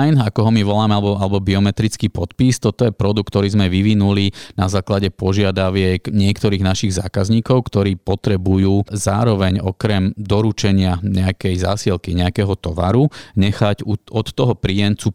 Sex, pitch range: male, 90-105 Hz